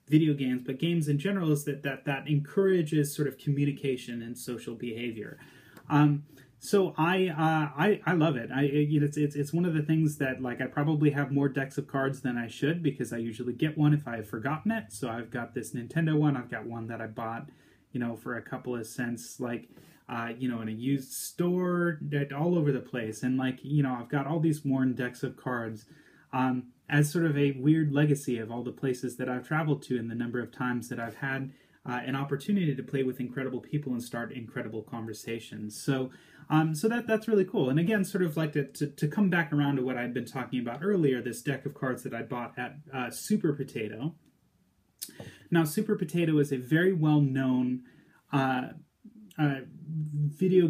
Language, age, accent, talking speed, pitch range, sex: English, 30-49, American, 215 wpm, 125-155 Hz, male